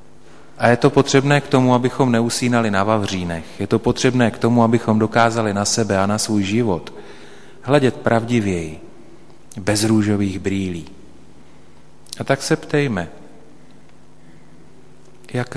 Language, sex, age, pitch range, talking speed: Slovak, male, 40-59, 100-120 Hz, 125 wpm